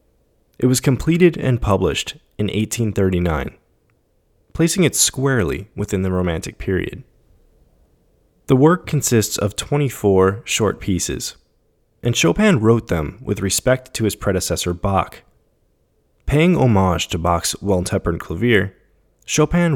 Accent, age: American, 20-39